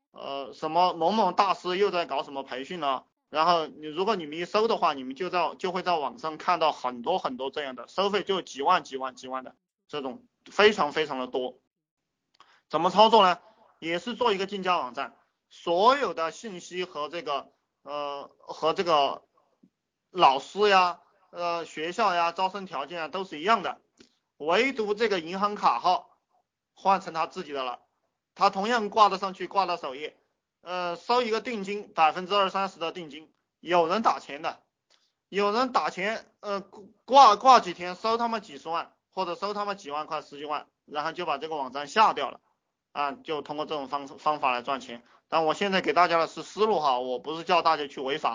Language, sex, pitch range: Chinese, male, 150-205 Hz